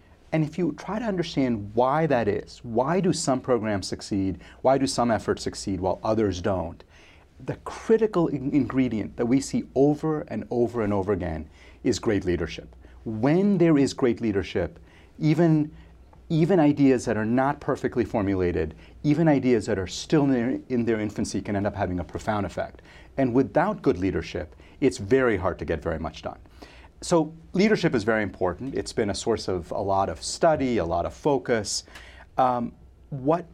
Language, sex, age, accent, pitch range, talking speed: English, male, 40-59, American, 90-135 Hz, 175 wpm